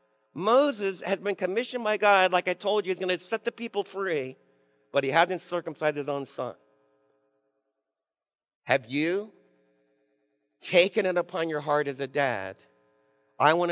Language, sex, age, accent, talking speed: English, male, 50-69, American, 160 wpm